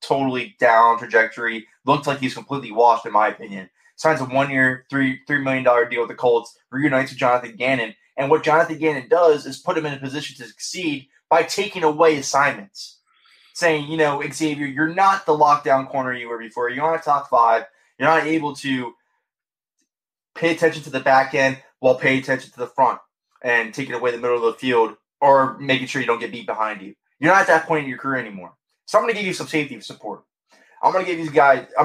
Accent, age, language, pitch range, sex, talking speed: American, 20-39, English, 120-155 Hz, male, 220 wpm